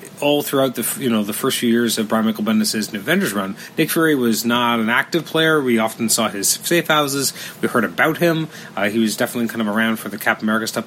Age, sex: 30-49, male